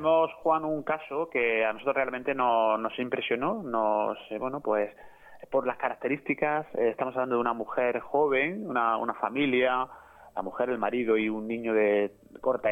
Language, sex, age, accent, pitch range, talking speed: Spanish, male, 20-39, Spanish, 110-135 Hz, 165 wpm